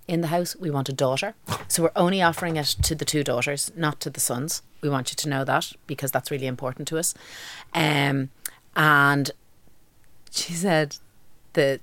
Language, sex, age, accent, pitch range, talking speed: English, female, 30-49, Irish, 140-200 Hz, 190 wpm